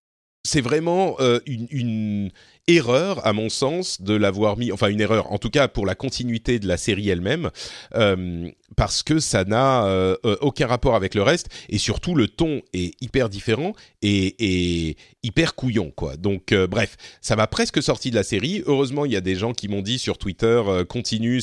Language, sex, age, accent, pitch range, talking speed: French, male, 40-59, French, 100-140 Hz, 195 wpm